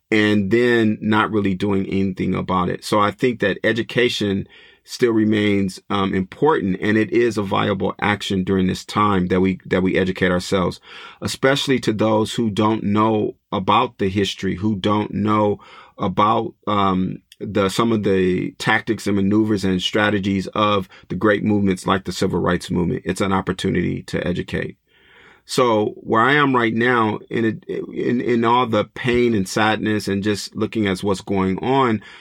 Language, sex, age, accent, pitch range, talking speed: English, male, 40-59, American, 95-110 Hz, 170 wpm